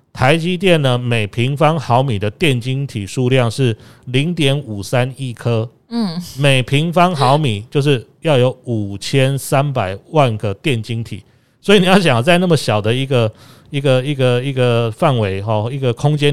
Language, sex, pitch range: Chinese, male, 110-140 Hz